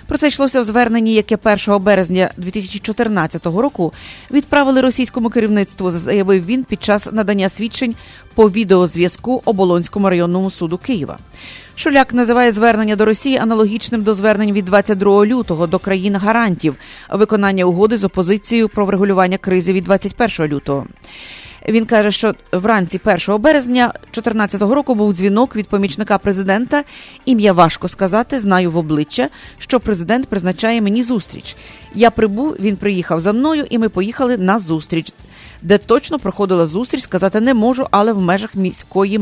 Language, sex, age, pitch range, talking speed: English, female, 30-49, 185-230 Hz, 145 wpm